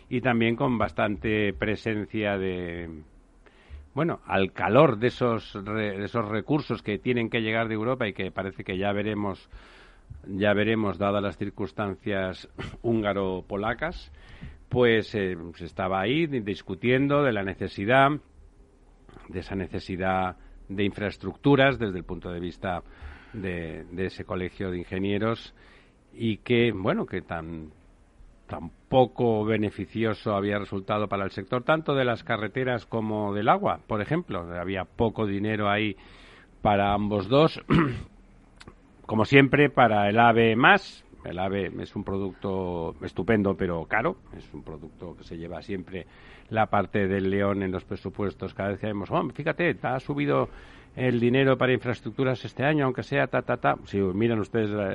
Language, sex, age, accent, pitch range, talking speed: Spanish, male, 50-69, Spanish, 95-115 Hz, 150 wpm